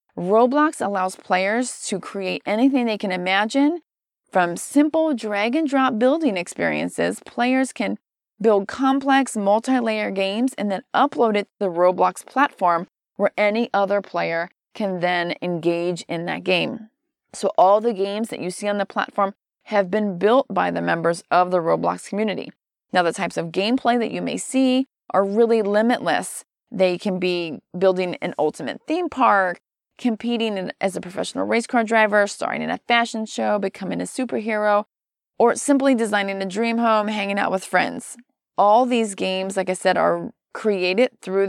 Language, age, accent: English, 30-49, American